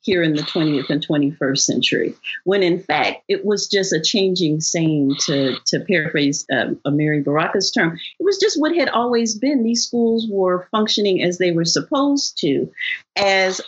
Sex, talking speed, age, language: female, 175 wpm, 40-59, English